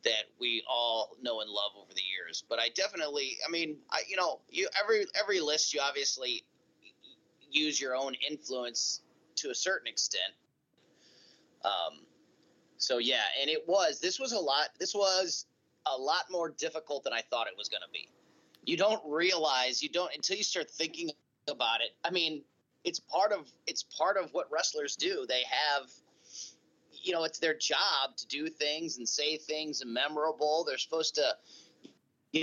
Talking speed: 175 wpm